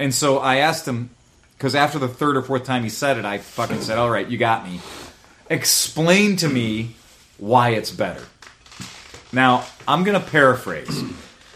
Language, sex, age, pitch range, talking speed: English, male, 30-49, 115-155 Hz, 175 wpm